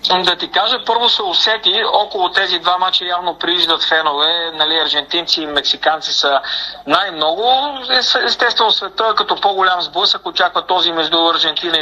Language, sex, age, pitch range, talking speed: Bulgarian, male, 40-59, 145-175 Hz, 140 wpm